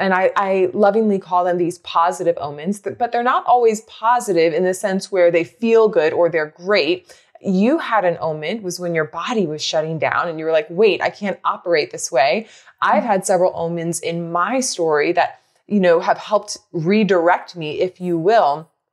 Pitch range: 175-230 Hz